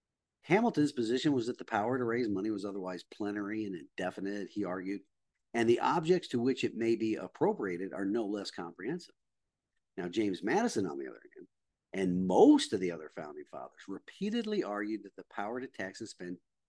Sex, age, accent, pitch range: male, 50-69, American, 105-145 Hz